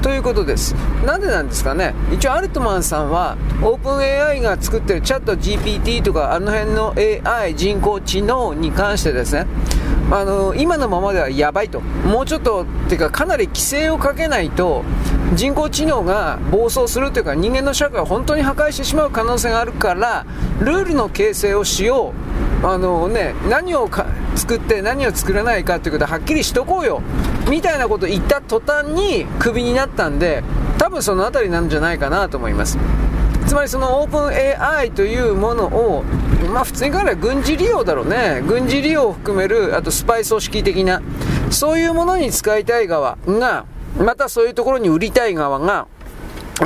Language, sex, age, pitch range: Japanese, male, 40-59, 185-295 Hz